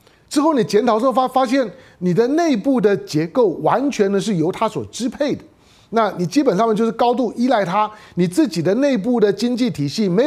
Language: Chinese